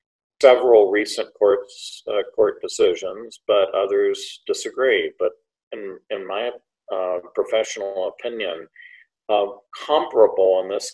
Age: 50-69